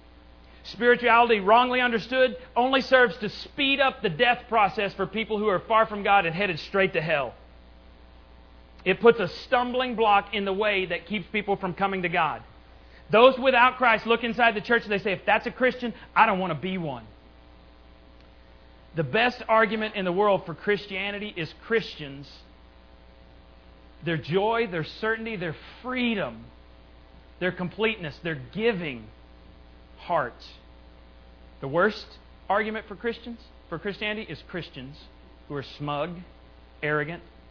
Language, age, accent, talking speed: English, 40-59, American, 145 wpm